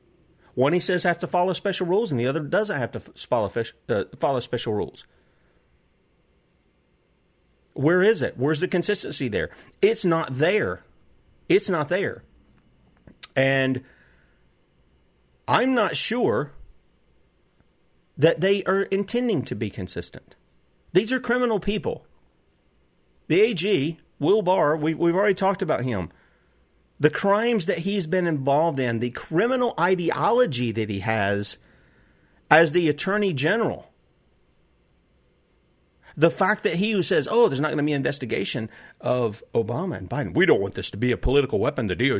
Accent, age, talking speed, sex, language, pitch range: American, 40-59, 140 wpm, male, English, 120-185 Hz